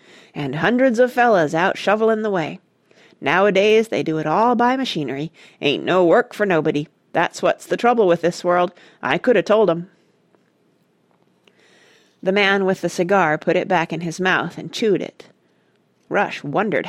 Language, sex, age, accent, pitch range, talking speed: English, female, 40-59, American, 170-230 Hz, 170 wpm